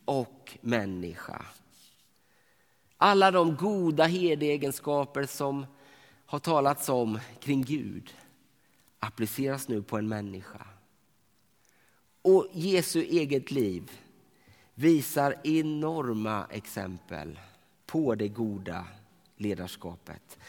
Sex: male